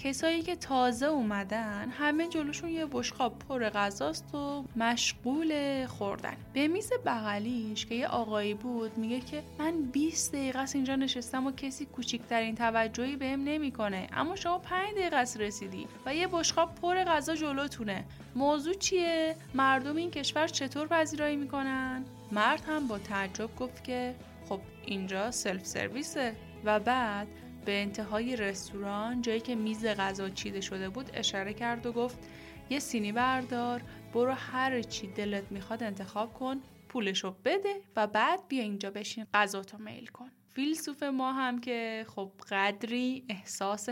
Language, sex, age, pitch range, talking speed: Persian, female, 10-29, 210-275 Hz, 145 wpm